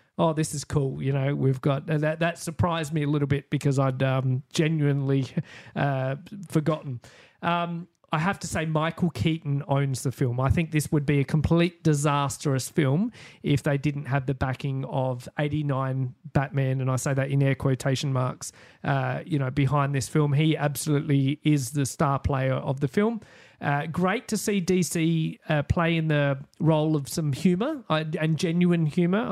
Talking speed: 180 wpm